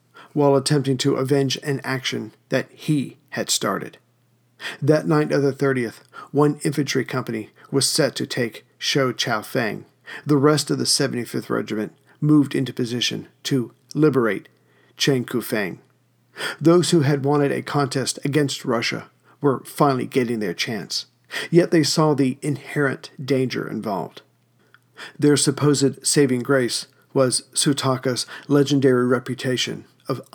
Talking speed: 135 wpm